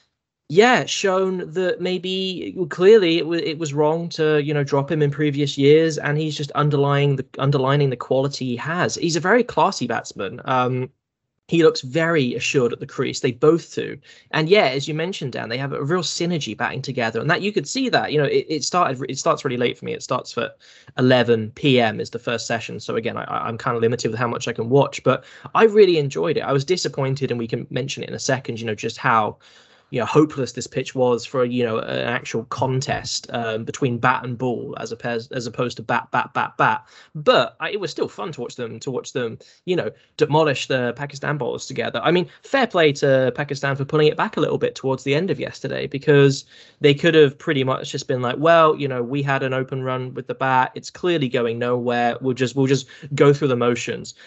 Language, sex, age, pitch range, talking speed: English, male, 10-29, 125-160 Hz, 230 wpm